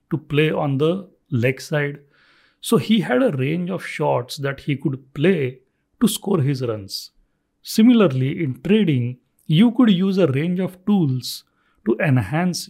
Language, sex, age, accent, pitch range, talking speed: English, male, 40-59, Indian, 135-170 Hz, 155 wpm